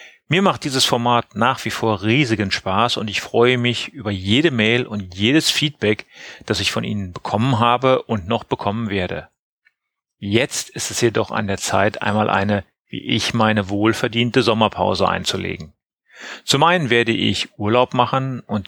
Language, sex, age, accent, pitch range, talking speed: German, male, 40-59, German, 105-130 Hz, 165 wpm